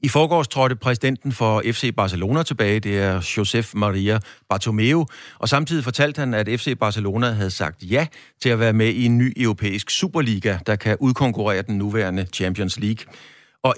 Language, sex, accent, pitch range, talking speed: Danish, male, native, 100-125 Hz, 175 wpm